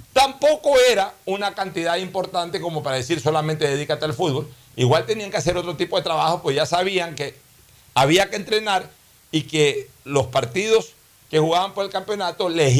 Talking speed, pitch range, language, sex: 175 wpm, 115-155 Hz, Spanish, male